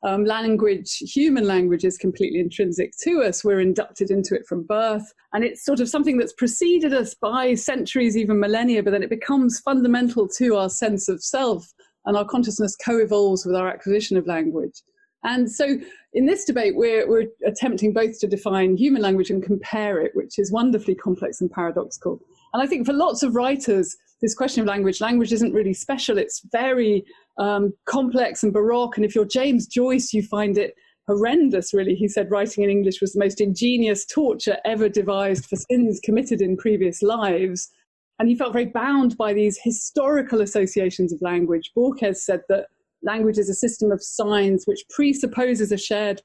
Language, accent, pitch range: English, British, 200-250 Hz